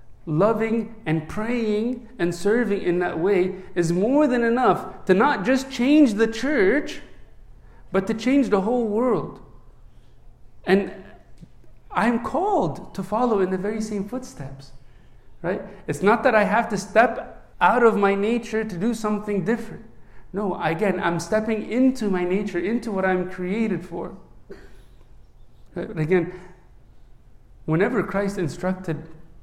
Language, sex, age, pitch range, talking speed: English, male, 50-69, 180-225 Hz, 135 wpm